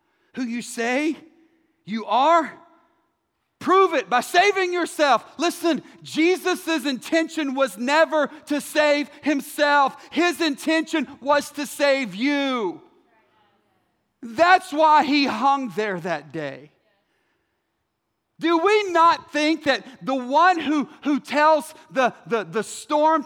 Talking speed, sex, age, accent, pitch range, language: 115 wpm, male, 40-59, American, 260-320 Hz, English